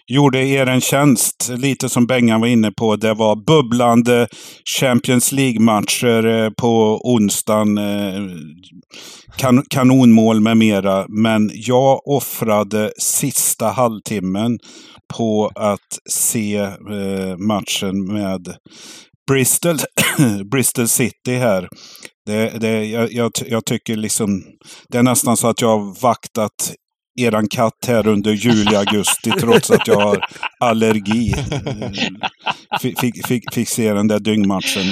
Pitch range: 105-125 Hz